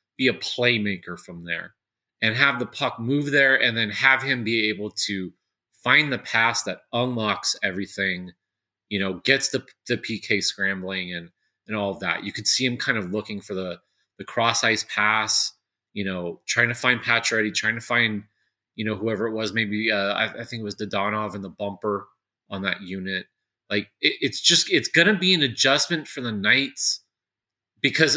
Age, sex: 30-49, male